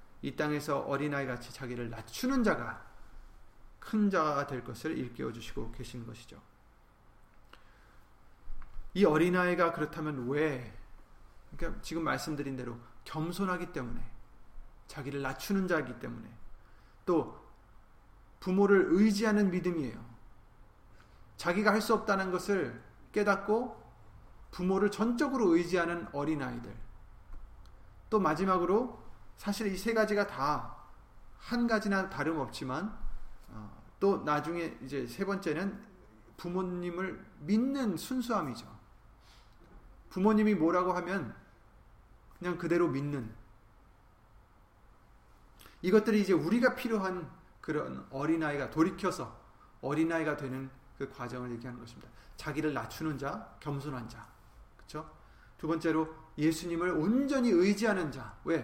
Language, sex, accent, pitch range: Korean, male, native, 115-190 Hz